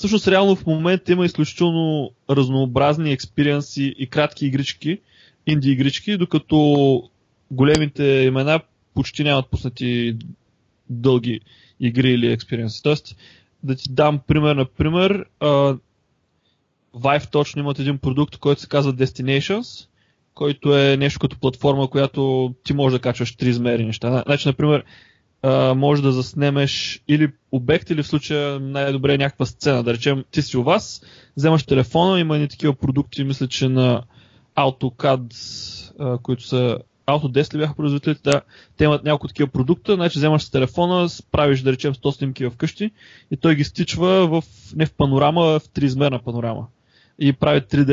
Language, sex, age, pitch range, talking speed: Bulgarian, male, 20-39, 130-150 Hz, 150 wpm